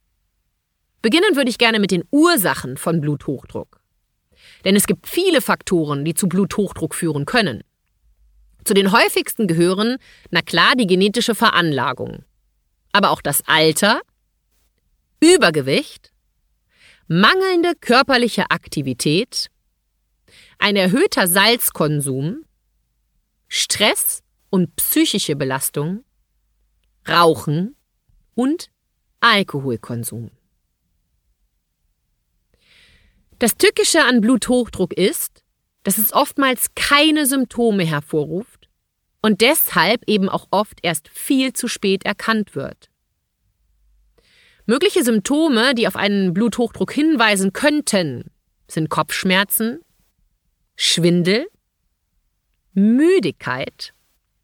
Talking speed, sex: 90 wpm, female